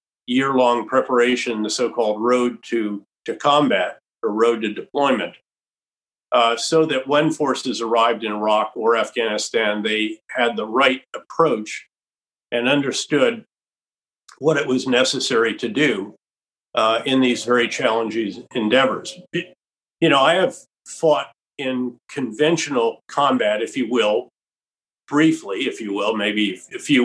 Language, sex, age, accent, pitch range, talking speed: English, male, 50-69, American, 115-150 Hz, 130 wpm